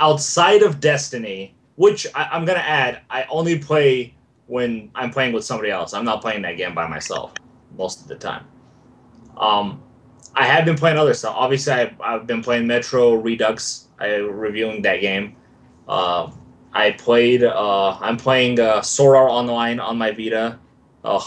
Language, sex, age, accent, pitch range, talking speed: English, male, 20-39, American, 105-130 Hz, 175 wpm